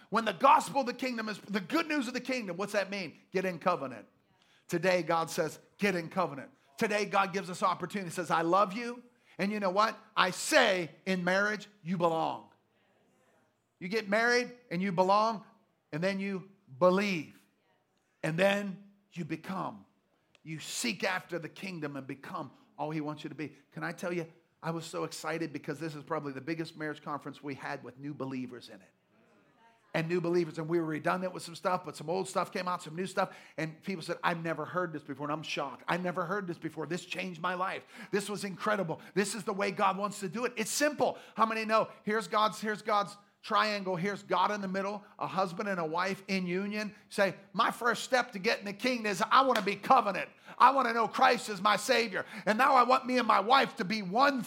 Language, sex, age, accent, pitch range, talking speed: English, male, 40-59, American, 170-220 Hz, 220 wpm